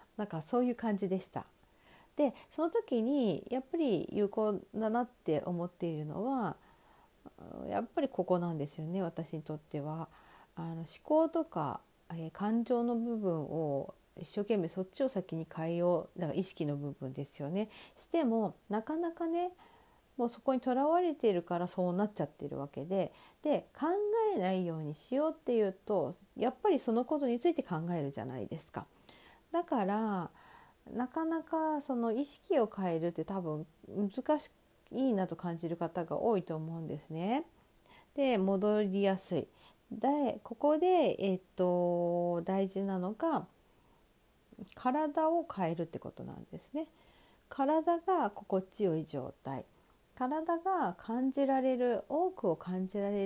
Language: Japanese